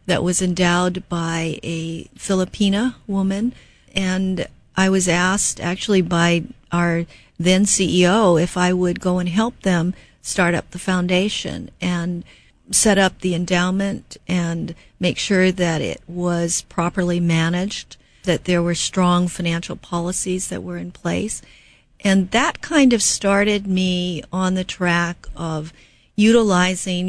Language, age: English, 50-69